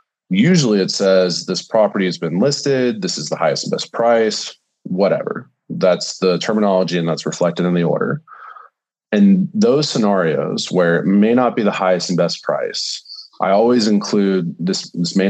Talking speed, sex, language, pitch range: 175 wpm, male, English, 90-115 Hz